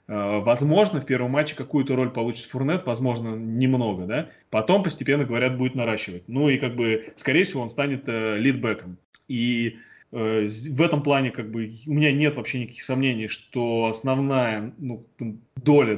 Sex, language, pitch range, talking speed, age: male, Russian, 115-150 Hz, 160 wpm, 20-39